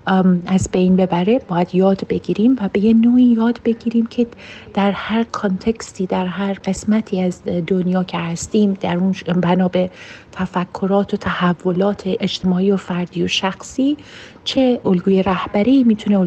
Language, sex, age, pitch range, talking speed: Persian, female, 40-59, 185-225 Hz, 140 wpm